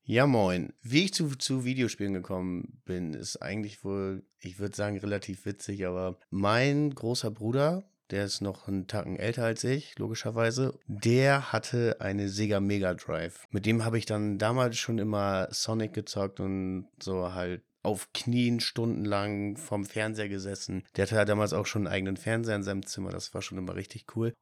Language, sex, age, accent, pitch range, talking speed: German, male, 30-49, German, 95-115 Hz, 180 wpm